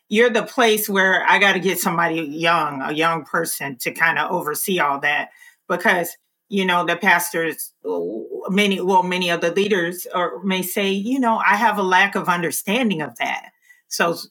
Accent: American